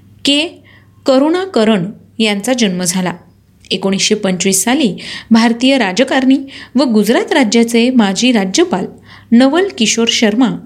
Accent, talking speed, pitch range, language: native, 100 wpm, 205-265 Hz, Marathi